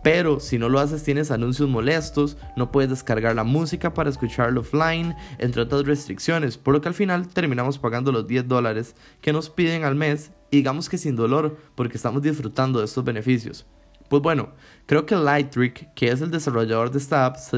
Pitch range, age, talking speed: 120-150 Hz, 10-29, 195 wpm